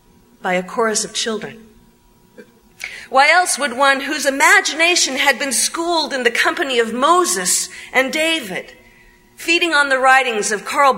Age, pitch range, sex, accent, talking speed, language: 40-59, 235-320 Hz, female, American, 150 wpm, English